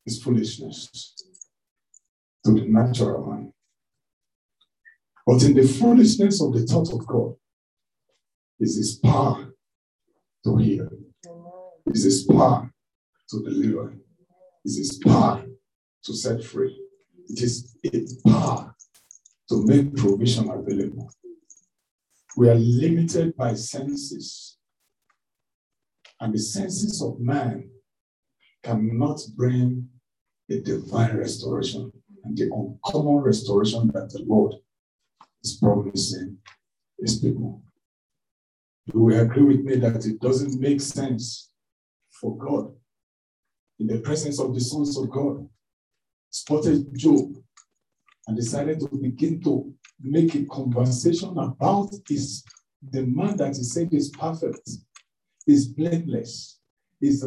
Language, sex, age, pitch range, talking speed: English, male, 60-79, 115-155 Hz, 115 wpm